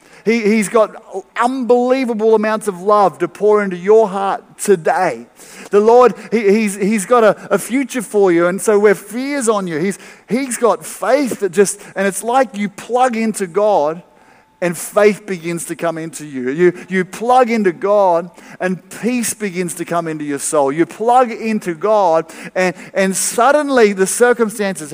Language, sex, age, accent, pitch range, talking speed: English, male, 50-69, Australian, 165-215 Hz, 175 wpm